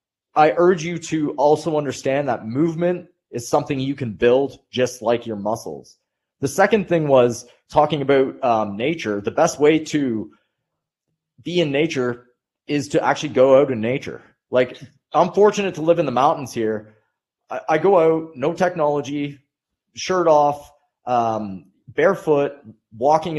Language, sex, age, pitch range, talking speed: English, male, 30-49, 125-165 Hz, 150 wpm